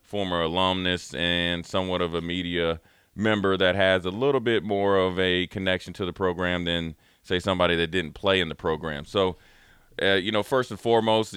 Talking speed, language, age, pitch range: 190 wpm, English, 30-49, 85-95 Hz